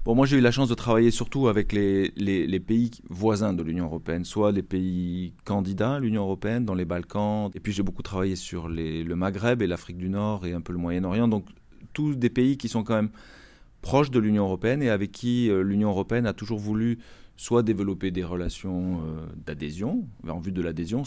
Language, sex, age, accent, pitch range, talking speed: French, male, 30-49, French, 90-115 Hz, 220 wpm